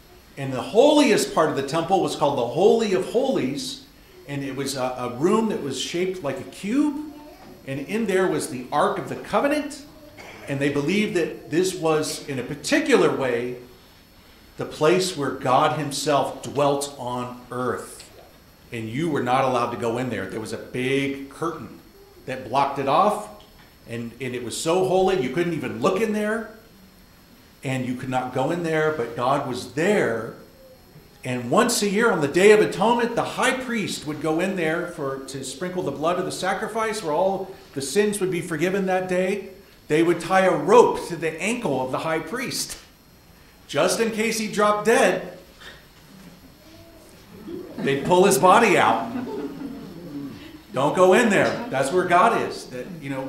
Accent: American